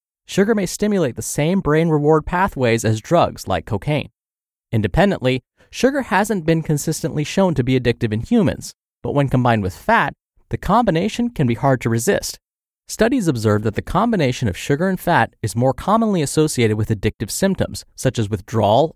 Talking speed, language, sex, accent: 170 wpm, English, male, American